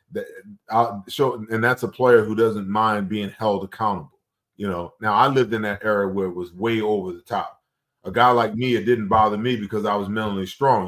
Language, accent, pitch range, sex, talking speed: English, American, 110-145 Hz, male, 225 wpm